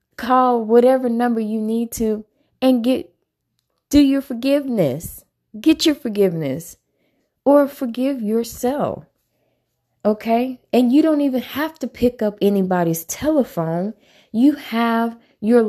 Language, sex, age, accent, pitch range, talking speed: English, female, 20-39, American, 195-250 Hz, 120 wpm